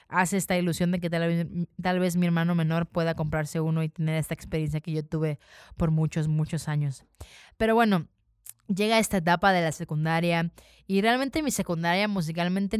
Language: Spanish